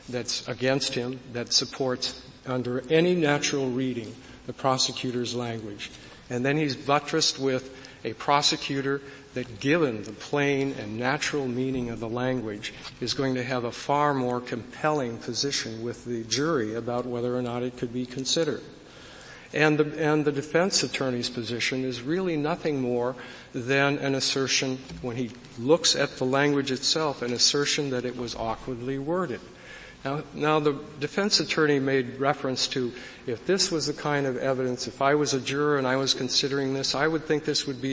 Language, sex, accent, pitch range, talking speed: English, male, American, 125-150 Hz, 170 wpm